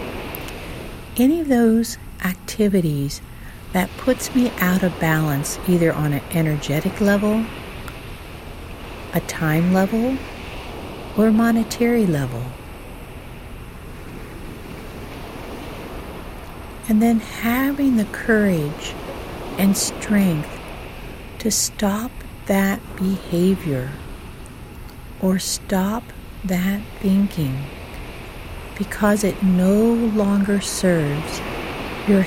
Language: English